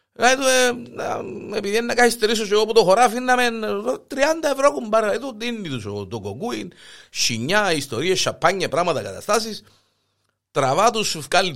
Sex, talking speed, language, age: male, 125 wpm, Greek, 50-69